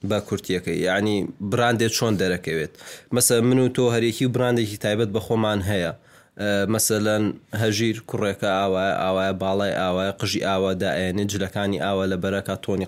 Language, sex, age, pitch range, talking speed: Arabic, male, 20-39, 100-130 Hz, 140 wpm